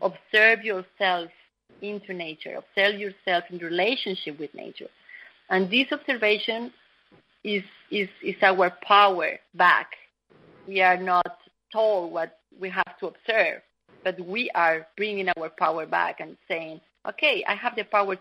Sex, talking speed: female, 140 wpm